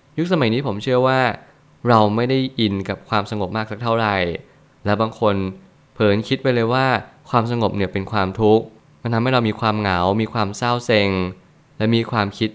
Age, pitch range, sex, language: 20-39, 100-125 Hz, male, Thai